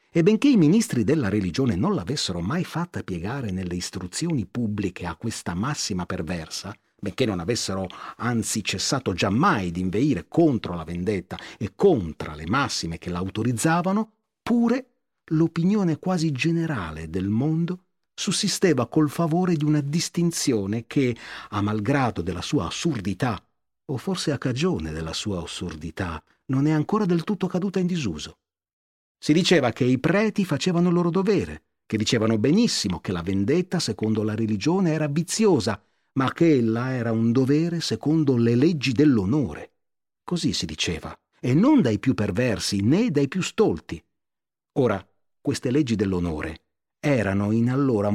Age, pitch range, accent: 40-59, 100-165 Hz, native